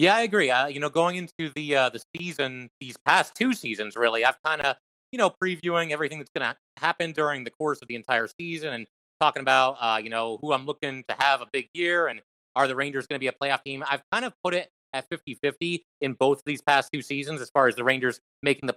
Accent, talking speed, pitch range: American, 250 wpm, 130-160 Hz